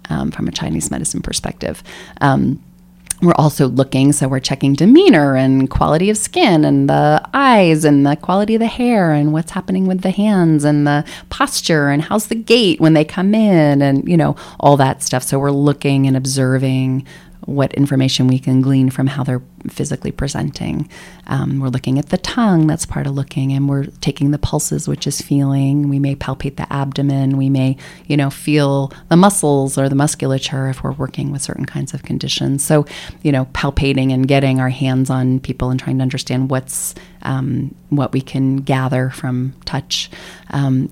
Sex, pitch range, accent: female, 130-150 Hz, American